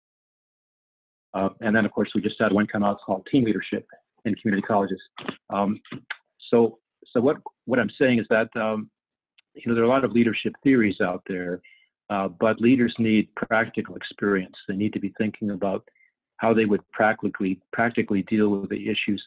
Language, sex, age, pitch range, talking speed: English, male, 50-69, 100-115 Hz, 185 wpm